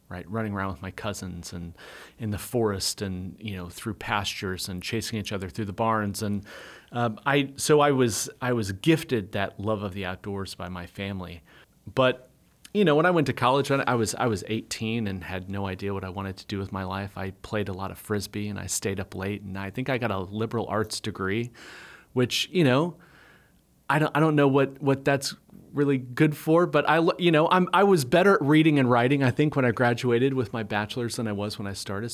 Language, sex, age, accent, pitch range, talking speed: English, male, 30-49, American, 100-130 Hz, 230 wpm